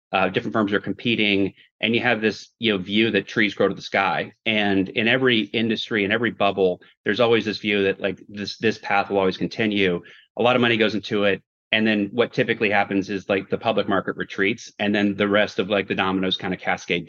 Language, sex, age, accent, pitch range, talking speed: English, male, 30-49, American, 95-110 Hz, 230 wpm